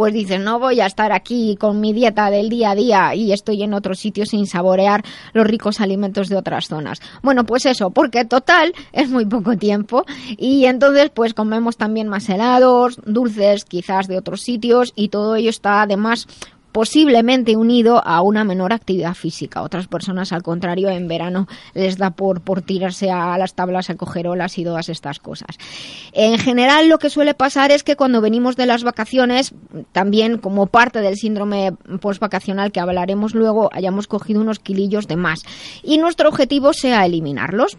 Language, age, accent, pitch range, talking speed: Spanish, 20-39, Spanish, 190-245 Hz, 180 wpm